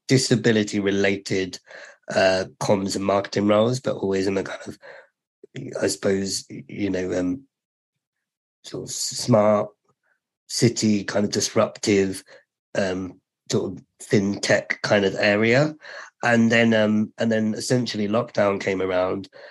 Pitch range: 100-115 Hz